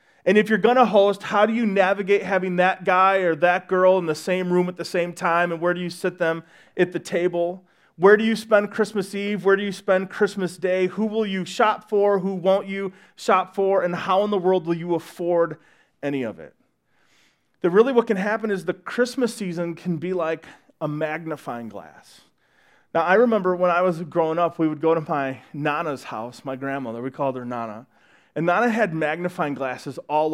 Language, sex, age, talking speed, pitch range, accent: English, male, 30-49, 215 wpm, 160-190 Hz, American